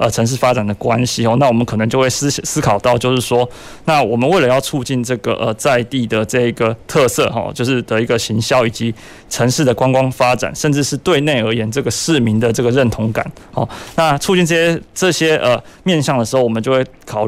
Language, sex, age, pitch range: Chinese, male, 20-39, 115-135 Hz